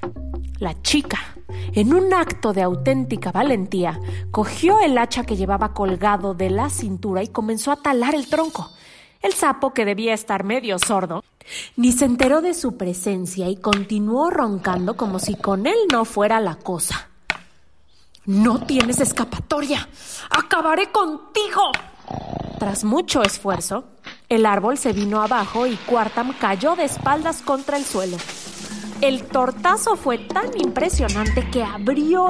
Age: 30-49